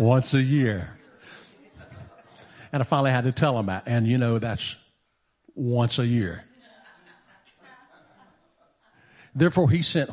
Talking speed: 125 wpm